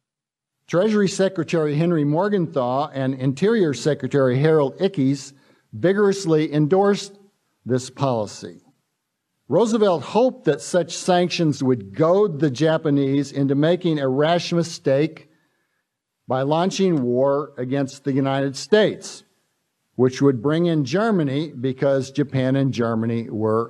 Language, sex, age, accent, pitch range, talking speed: English, male, 50-69, American, 140-180 Hz, 110 wpm